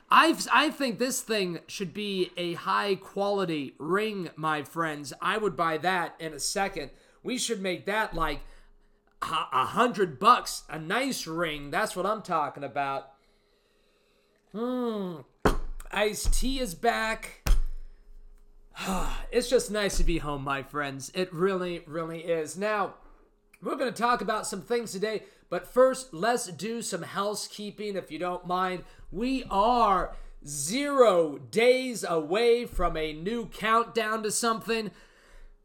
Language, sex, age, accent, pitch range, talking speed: English, male, 30-49, American, 180-235 Hz, 140 wpm